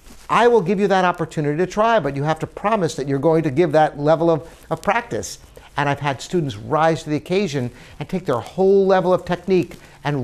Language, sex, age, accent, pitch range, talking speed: English, male, 60-79, American, 160-210 Hz, 230 wpm